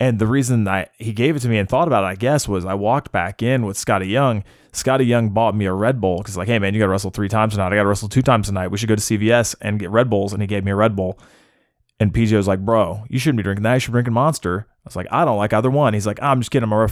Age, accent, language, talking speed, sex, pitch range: 20-39, American, English, 330 wpm, male, 100-125 Hz